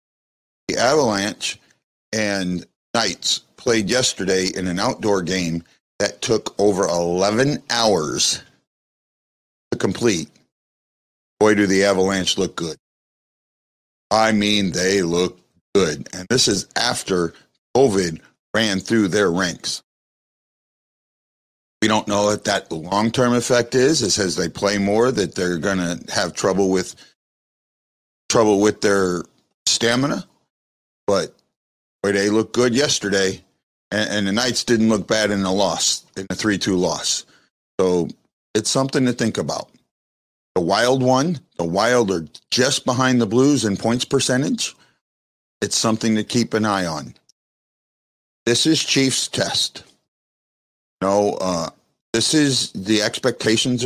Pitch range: 90-120 Hz